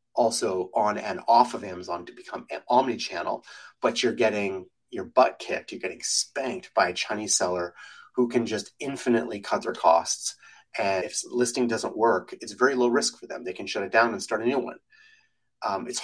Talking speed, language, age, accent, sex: 200 wpm, English, 30-49, American, male